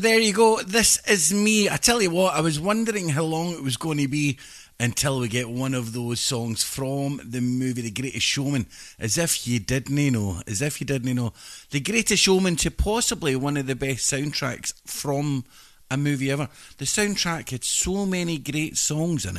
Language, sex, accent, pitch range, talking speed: English, male, British, 115-160 Hz, 200 wpm